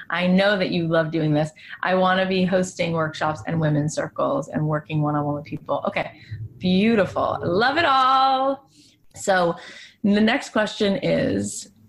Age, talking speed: 30-49, 155 wpm